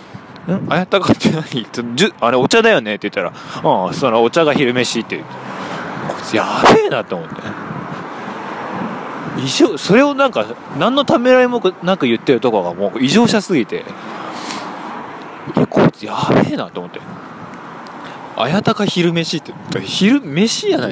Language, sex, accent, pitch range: Japanese, male, native, 125-205 Hz